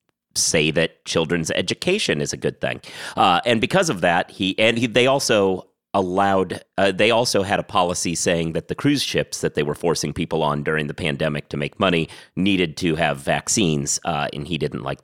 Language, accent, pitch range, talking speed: English, American, 75-95 Hz, 205 wpm